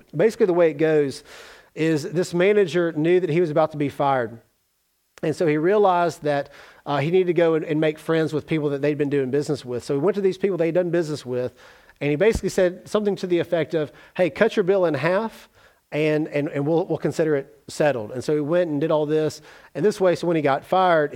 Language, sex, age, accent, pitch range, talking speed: English, male, 40-59, American, 145-185 Hz, 245 wpm